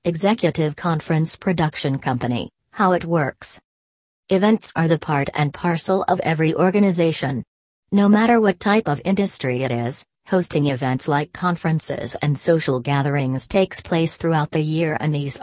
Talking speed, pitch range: 150 wpm, 140-175 Hz